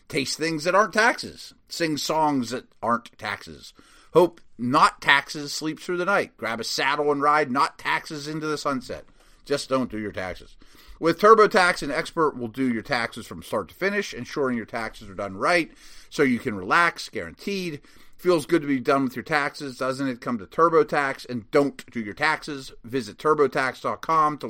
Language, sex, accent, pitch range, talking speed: English, male, American, 115-155 Hz, 185 wpm